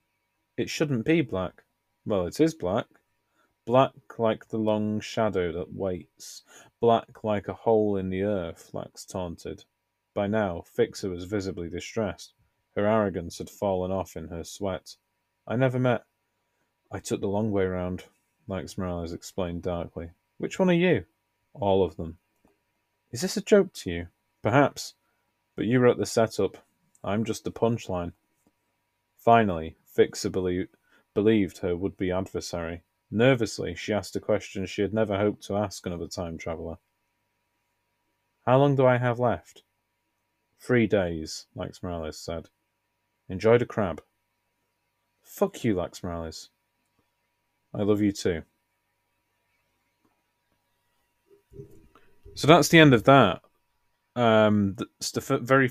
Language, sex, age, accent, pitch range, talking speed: English, male, 30-49, British, 95-115 Hz, 135 wpm